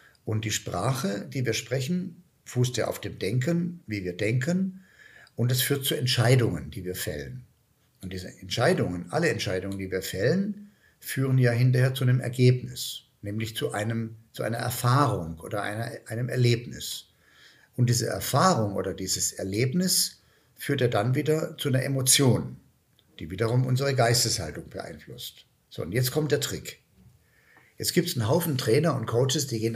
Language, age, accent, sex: German, 60-79, German, male